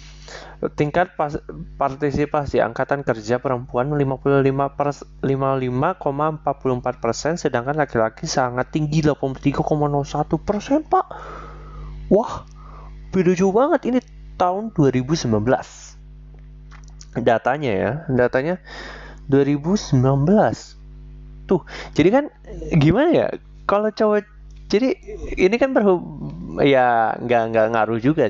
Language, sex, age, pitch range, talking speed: Indonesian, male, 20-39, 125-165 Hz, 90 wpm